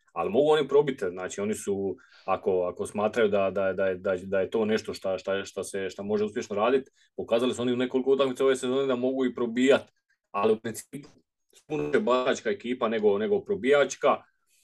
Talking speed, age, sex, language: 180 wpm, 40-59, male, Croatian